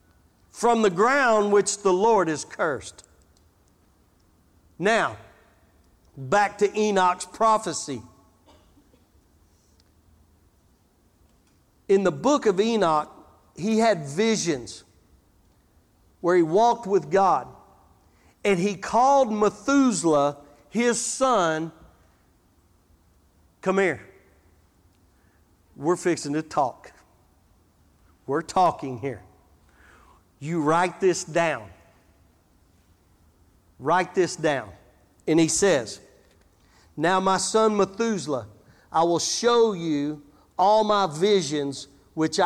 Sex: male